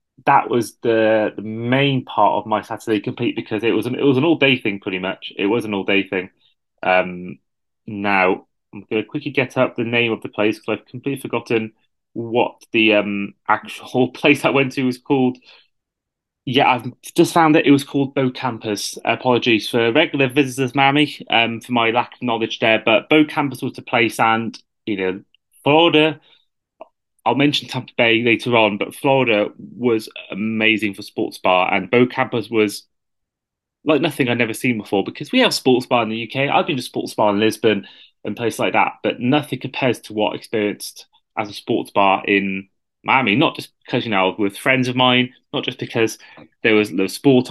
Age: 20-39